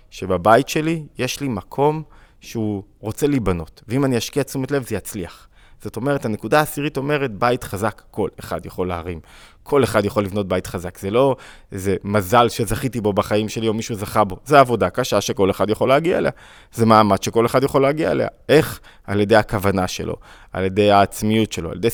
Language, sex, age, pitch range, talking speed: Hebrew, male, 20-39, 100-125 Hz, 190 wpm